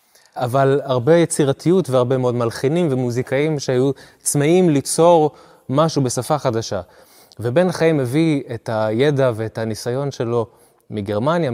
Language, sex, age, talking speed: Hebrew, male, 20-39, 115 wpm